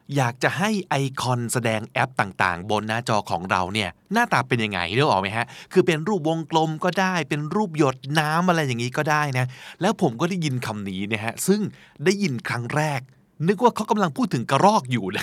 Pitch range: 115-165 Hz